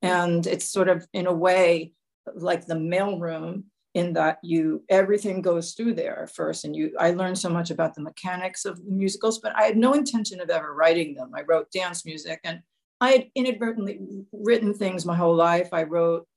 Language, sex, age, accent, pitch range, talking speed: English, female, 50-69, American, 170-215 Hz, 195 wpm